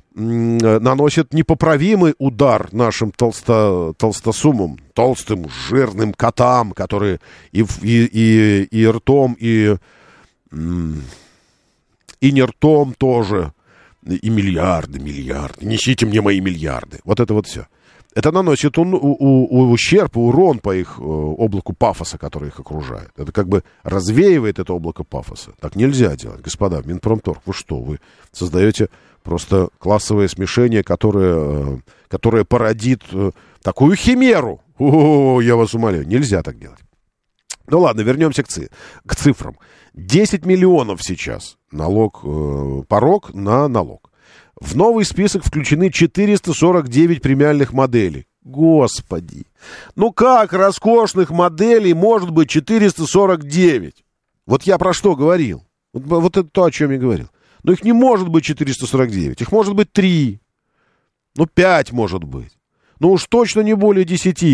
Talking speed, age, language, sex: 120 wpm, 50-69, Russian, male